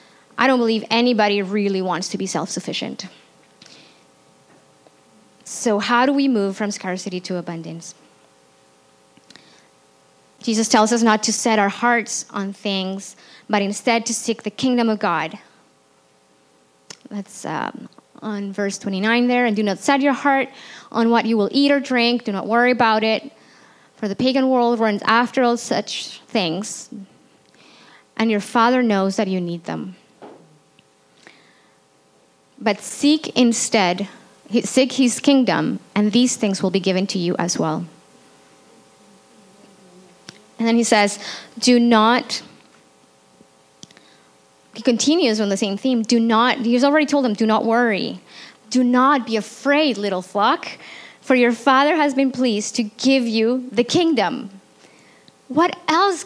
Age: 20-39